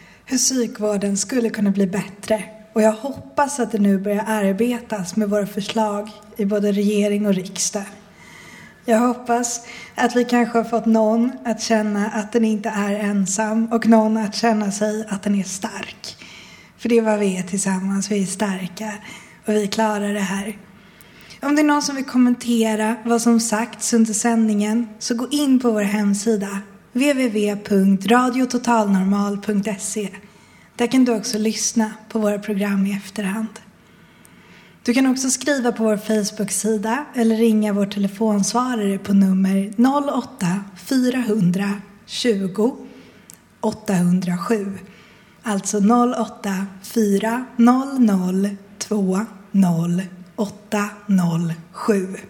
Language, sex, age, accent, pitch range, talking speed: Swedish, female, 20-39, native, 200-230 Hz, 125 wpm